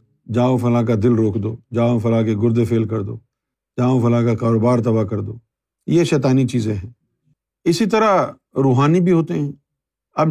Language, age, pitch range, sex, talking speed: Urdu, 50-69, 115-145 Hz, male, 180 wpm